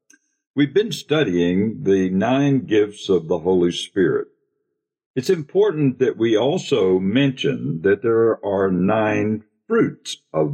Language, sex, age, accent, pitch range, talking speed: English, male, 60-79, American, 95-140 Hz, 125 wpm